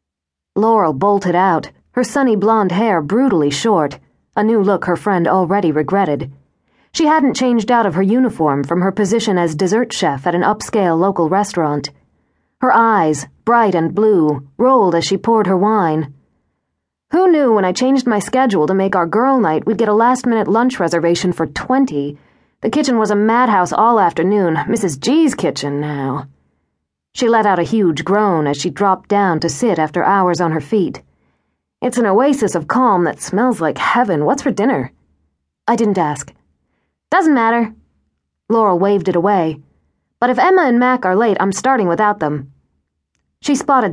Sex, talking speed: female, 175 wpm